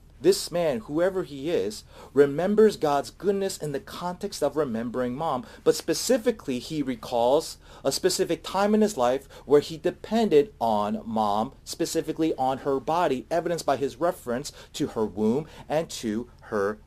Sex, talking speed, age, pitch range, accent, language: male, 155 wpm, 40-59, 130-185 Hz, American, English